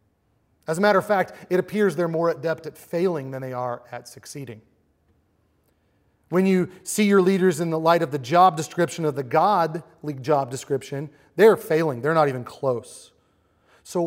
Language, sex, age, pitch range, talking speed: English, male, 30-49, 120-180 Hz, 175 wpm